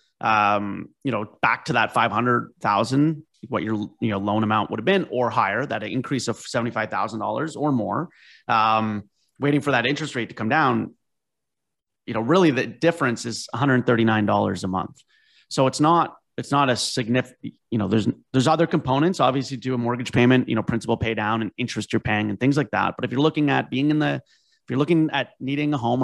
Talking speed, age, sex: 205 wpm, 30-49, male